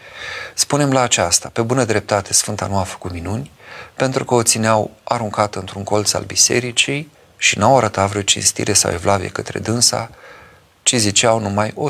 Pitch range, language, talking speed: 95-115 Hz, Romanian, 170 wpm